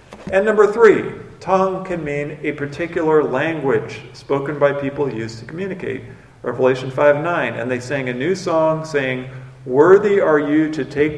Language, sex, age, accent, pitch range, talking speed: English, male, 50-69, American, 130-160 Hz, 160 wpm